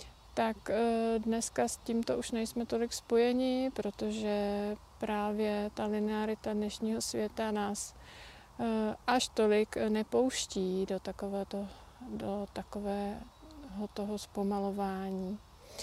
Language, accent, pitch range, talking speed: Czech, native, 210-235 Hz, 95 wpm